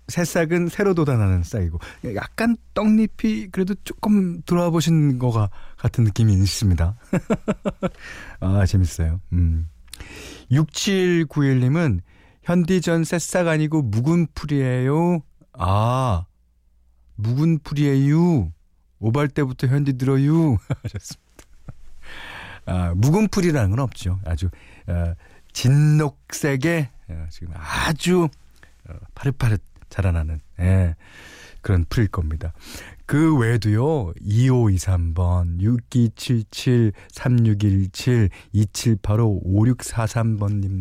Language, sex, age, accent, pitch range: Korean, male, 40-59, native, 90-150 Hz